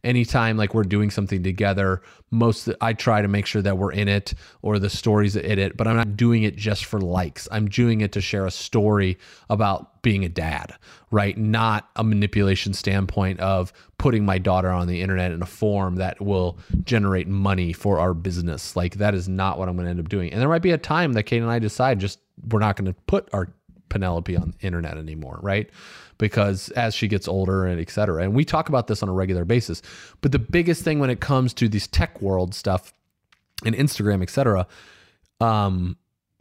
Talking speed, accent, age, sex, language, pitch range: 215 wpm, American, 30-49, male, English, 95-115 Hz